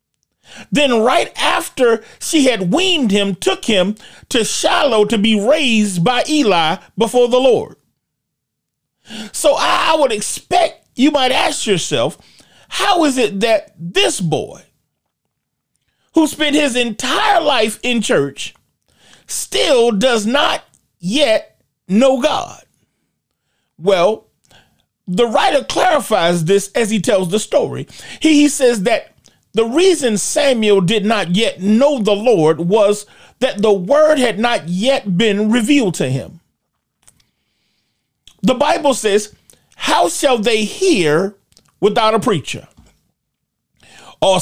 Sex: male